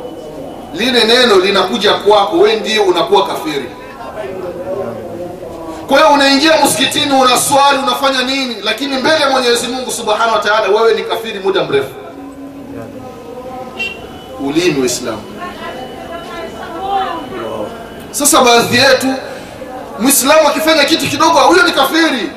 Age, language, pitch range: 30-49, Swahili, 200-280 Hz